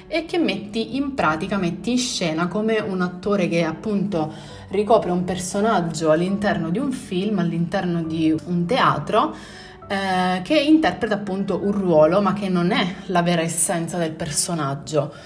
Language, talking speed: Italian, 155 wpm